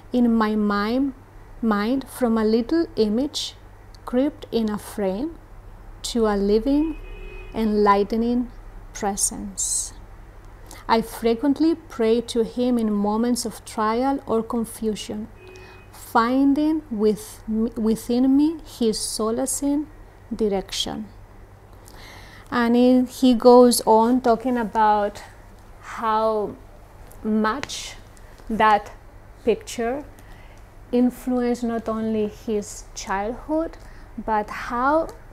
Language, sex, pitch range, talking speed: English, female, 205-250 Hz, 90 wpm